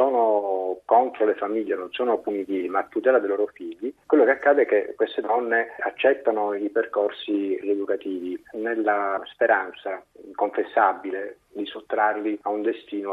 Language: Italian